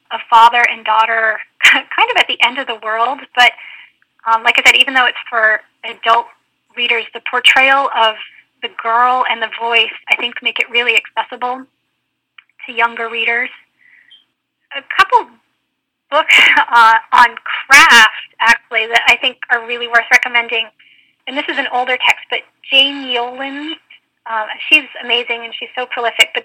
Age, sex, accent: 10-29, female, American